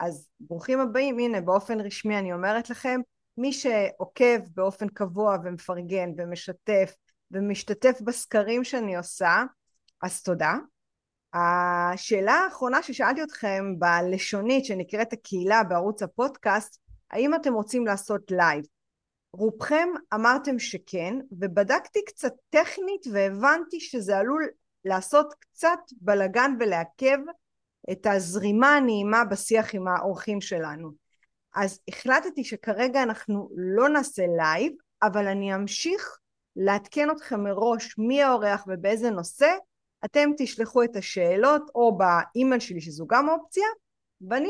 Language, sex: Hebrew, female